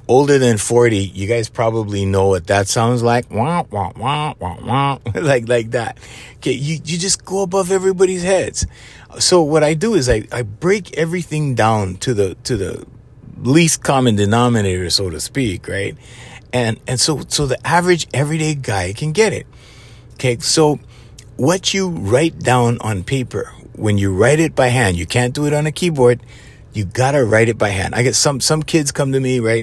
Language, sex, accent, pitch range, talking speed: English, male, American, 110-145 Hz, 180 wpm